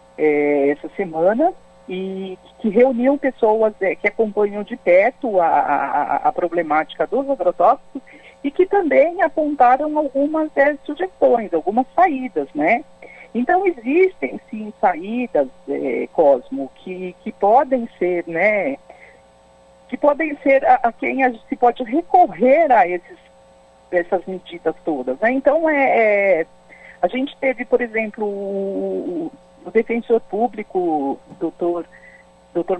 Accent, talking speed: Brazilian, 125 wpm